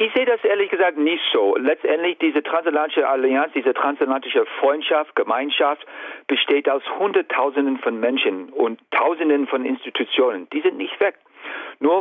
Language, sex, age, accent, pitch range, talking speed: German, male, 50-69, German, 125-200 Hz, 145 wpm